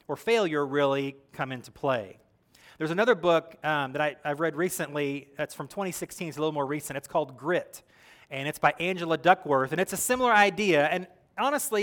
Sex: male